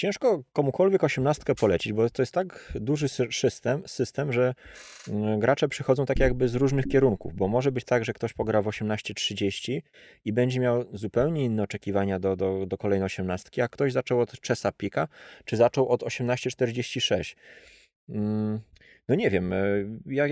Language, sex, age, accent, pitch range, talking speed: Polish, male, 20-39, native, 100-130 Hz, 155 wpm